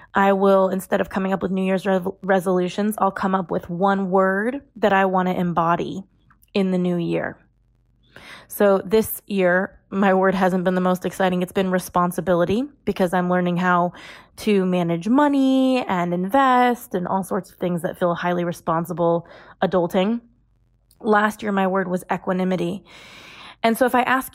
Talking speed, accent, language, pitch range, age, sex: 170 wpm, American, English, 180-220 Hz, 20-39, female